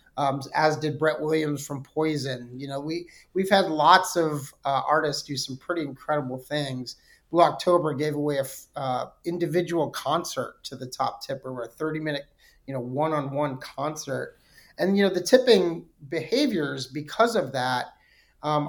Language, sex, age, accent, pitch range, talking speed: English, male, 30-49, American, 135-165 Hz, 165 wpm